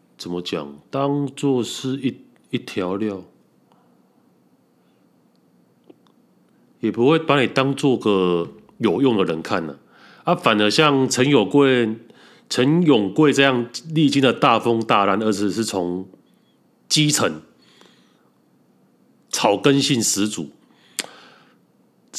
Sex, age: male, 30-49